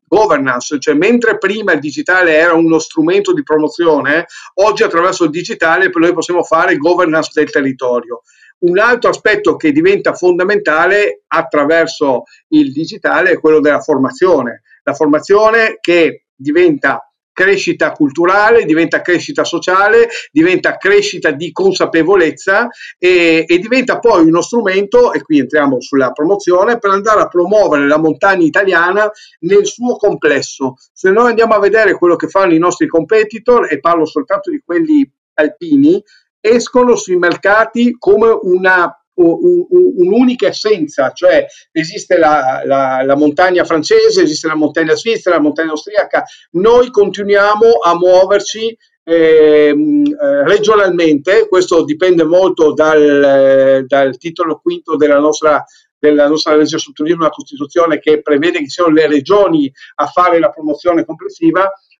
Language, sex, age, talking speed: Italian, male, 50-69, 135 wpm